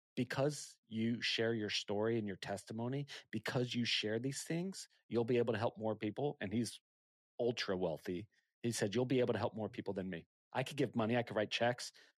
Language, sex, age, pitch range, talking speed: English, male, 30-49, 110-140 Hz, 210 wpm